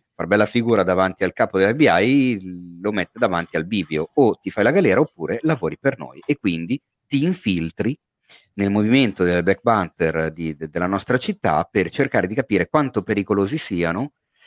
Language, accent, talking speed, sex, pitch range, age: Italian, native, 170 wpm, male, 95-135 Hz, 40-59